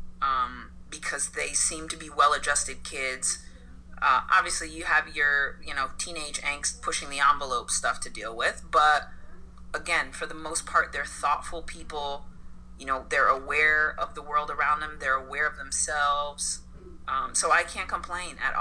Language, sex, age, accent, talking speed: English, female, 30-49, American, 170 wpm